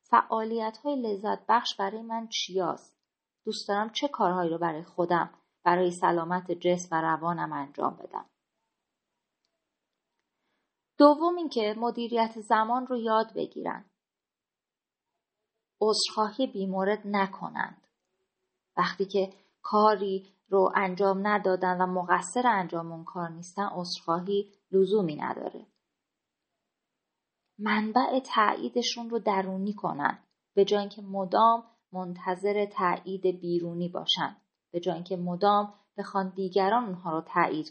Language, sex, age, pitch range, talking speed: Persian, female, 30-49, 180-215 Hz, 105 wpm